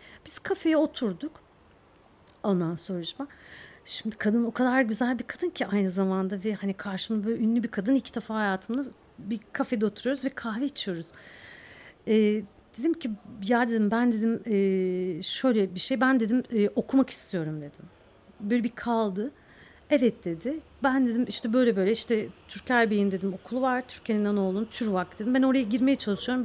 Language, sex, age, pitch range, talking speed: Turkish, female, 40-59, 205-275 Hz, 160 wpm